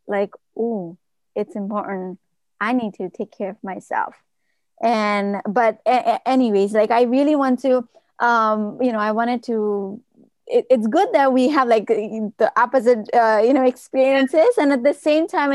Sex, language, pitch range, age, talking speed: female, English, 215-260 Hz, 20-39, 175 wpm